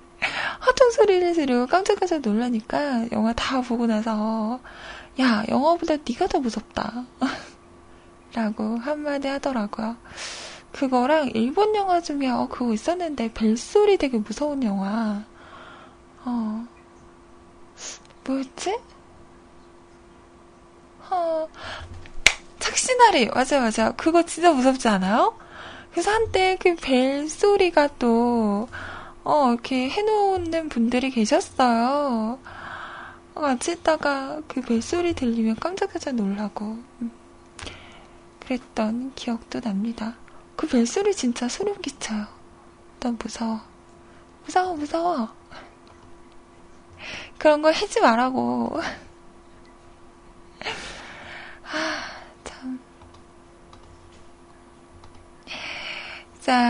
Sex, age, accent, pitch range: female, 20-39, native, 220-315 Hz